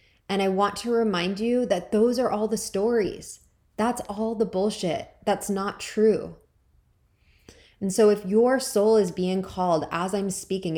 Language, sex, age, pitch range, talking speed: English, female, 20-39, 155-200 Hz, 165 wpm